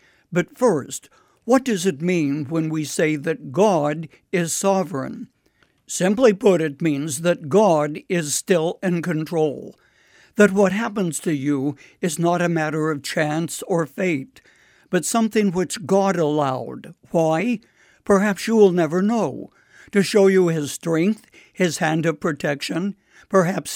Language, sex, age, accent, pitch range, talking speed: English, male, 60-79, American, 155-195 Hz, 145 wpm